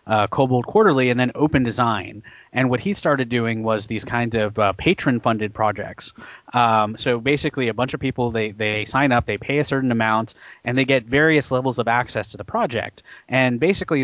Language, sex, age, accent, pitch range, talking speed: English, male, 30-49, American, 110-130 Hz, 200 wpm